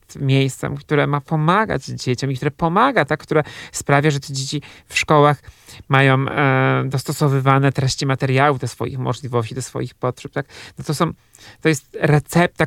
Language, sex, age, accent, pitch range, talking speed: Polish, male, 40-59, native, 120-140 Hz, 155 wpm